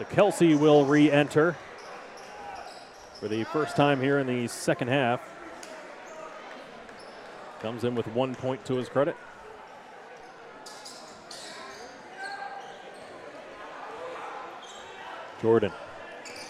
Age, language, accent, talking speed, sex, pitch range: 30-49, English, American, 75 wpm, male, 130-155 Hz